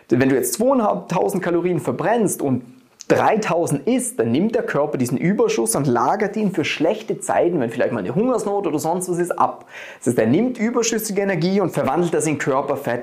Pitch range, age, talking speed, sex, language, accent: 140-195 Hz, 30-49, 195 wpm, male, German, German